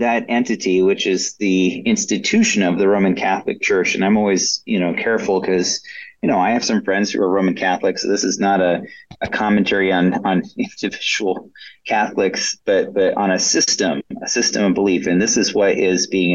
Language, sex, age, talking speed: English, male, 30-49, 195 wpm